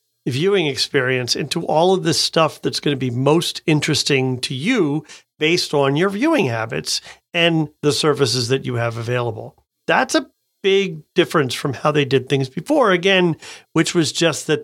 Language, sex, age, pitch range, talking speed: English, male, 40-59, 130-170 Hz, 170 wpm